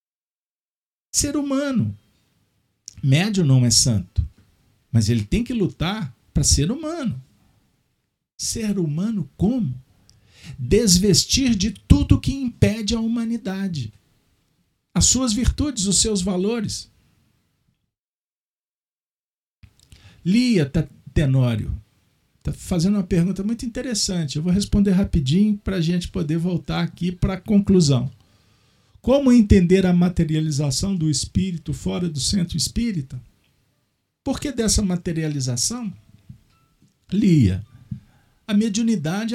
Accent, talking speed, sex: Brazilian, 100 wpm, male